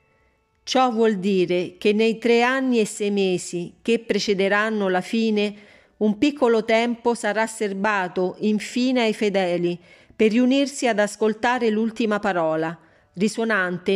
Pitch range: 180-225 Hz